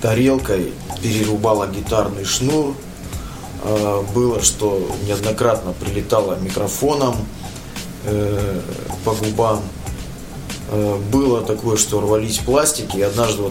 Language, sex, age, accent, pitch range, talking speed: Russian, male, 20-39, native, 95-120 Hz, 75 wpm